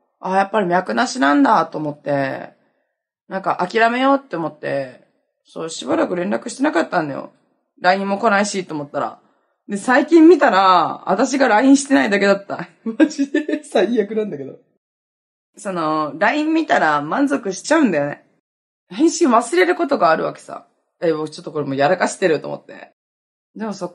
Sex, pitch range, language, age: female, 175-275 Hz, Japanese, 20-39